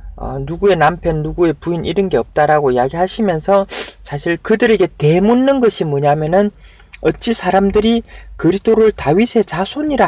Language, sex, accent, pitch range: Korean, male, native, 140-220 Hz